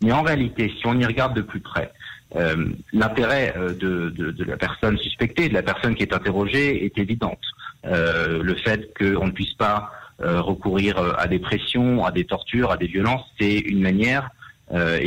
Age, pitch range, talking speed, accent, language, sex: 50-69, 95-125 Hz, 190 wpm, French, French, male